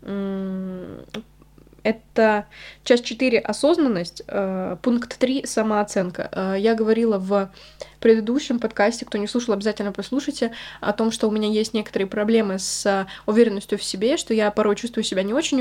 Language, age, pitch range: Russian, 20-39, 200-250 Hz